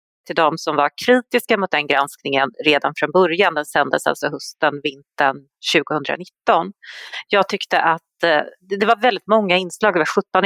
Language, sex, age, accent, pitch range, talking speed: Swedish, female, 30-49, native, 160-210 Hz, 160 wpm